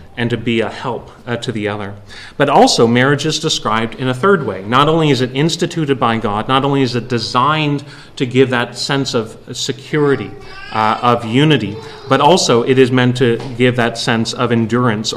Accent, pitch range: American, 120-145 Hz